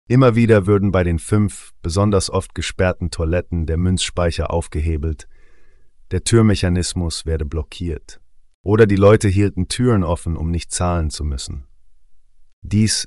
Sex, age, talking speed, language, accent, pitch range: male, 30-49, 135 wpm, German, German, 80-95 Hz